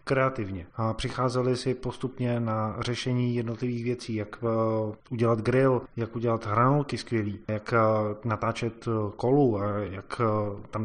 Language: Czech